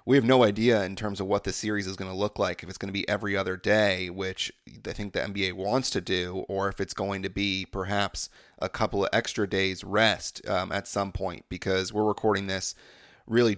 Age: 30-49